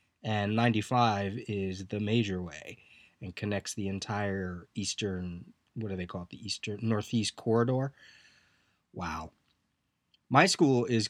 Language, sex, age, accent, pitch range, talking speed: English, male, 30-49, American, 105-135 Hz, 130 wpm